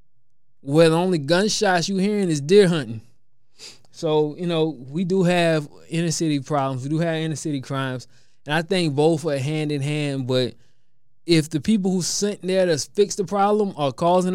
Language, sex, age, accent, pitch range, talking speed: English, male, 20-39, American, 130-185 Hz, 190 wpm